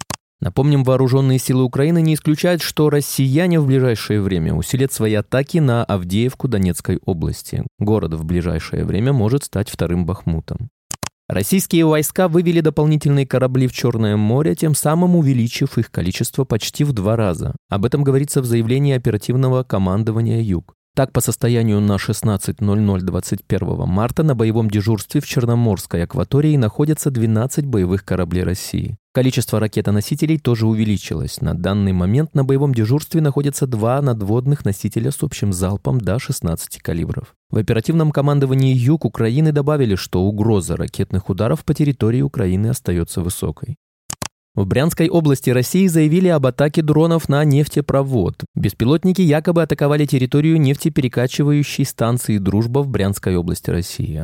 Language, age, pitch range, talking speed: Russian, 20-39, 105-145 Hz, 140 wpm